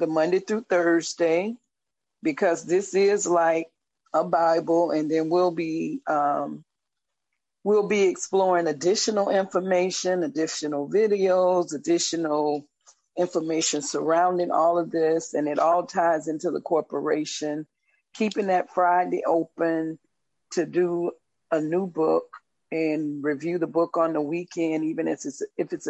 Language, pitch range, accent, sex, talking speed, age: English, 160-185 Hz, American, female, 130 wpm, 40-59